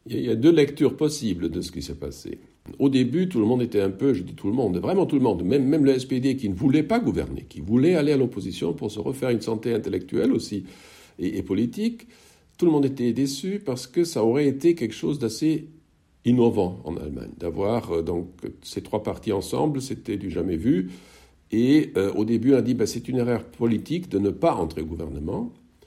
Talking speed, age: 225 wpm, 60-79